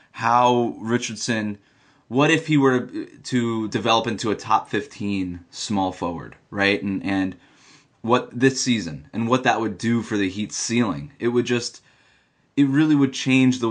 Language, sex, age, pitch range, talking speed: English, male, 20-39, 105-125 Hz, 160 wpm